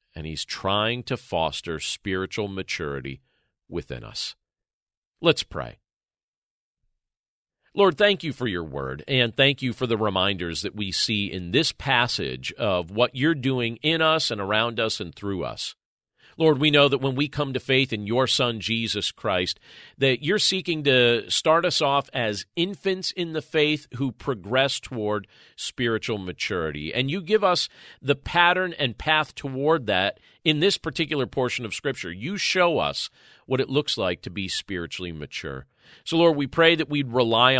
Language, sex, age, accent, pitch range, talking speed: English, male, 40-59, American, 100-145 Hz, 170 wpm